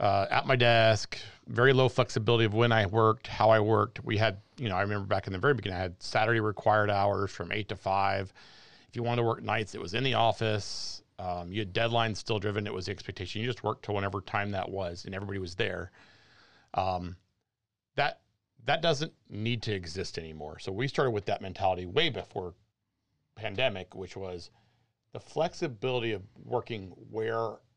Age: 40-59